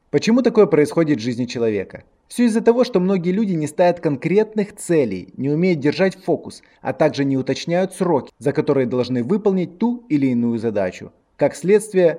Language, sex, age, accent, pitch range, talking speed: Russian, male, 20-39, native, 135-190 Hz, 170 wpm